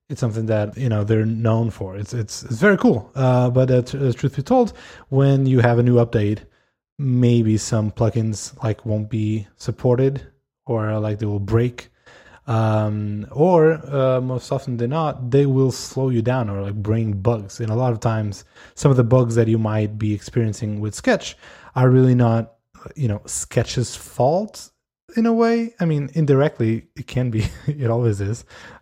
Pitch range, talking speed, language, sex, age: 110-130 Hz, 185 wpm, English, male, 20-39